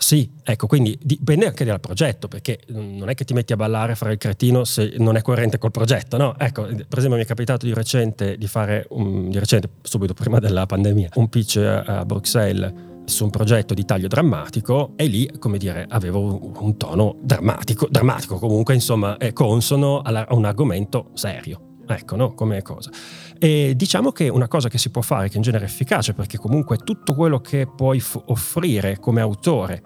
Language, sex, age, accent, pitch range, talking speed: Italian, male, 30-49, native, 110-135 Hz, 200 wpm